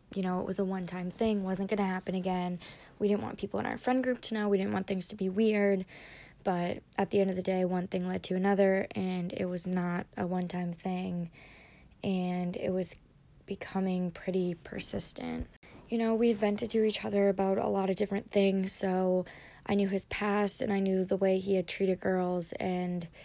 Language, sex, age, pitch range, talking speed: English, female, 20-39, 180-200 Hz, 210 wpm